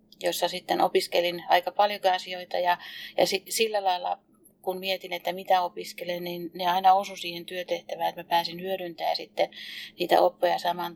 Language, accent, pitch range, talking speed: Finnish, native, 175-195 Hz, 155 wpm